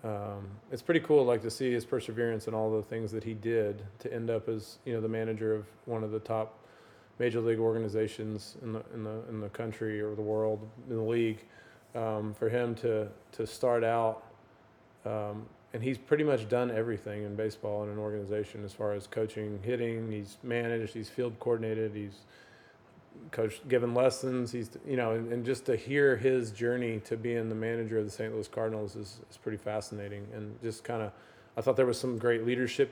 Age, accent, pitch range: 20-39, American, 105-115 Hz